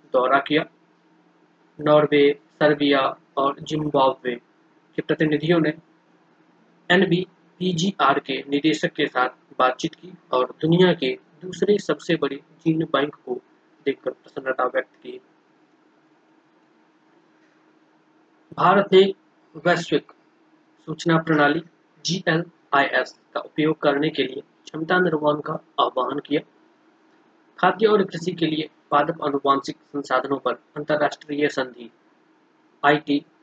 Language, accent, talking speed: Hindi, native, 85 wpm